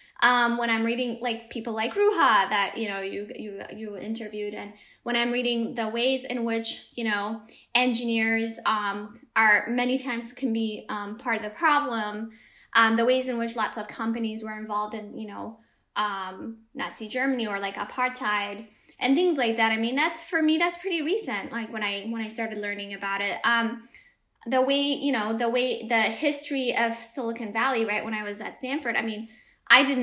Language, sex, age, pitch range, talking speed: English, female, 10-29, 210-255 Hz, 200 wpm